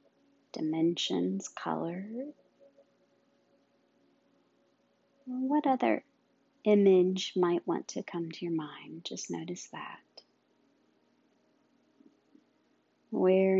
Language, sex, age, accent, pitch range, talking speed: English, female, 40-59, American, 175-275 Hz, 70 wpm